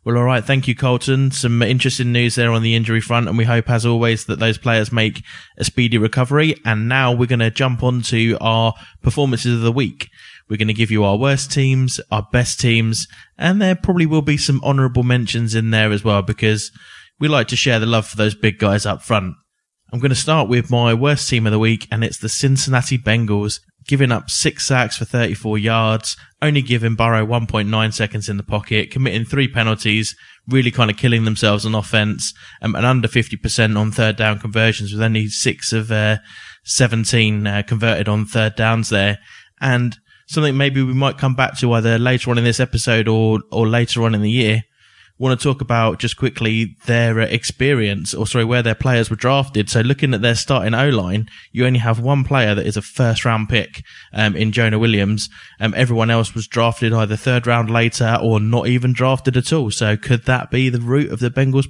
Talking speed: 210 wpm